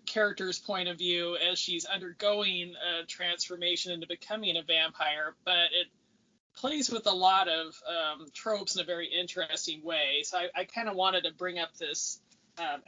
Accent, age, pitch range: American, 20-39, 175-205 Hz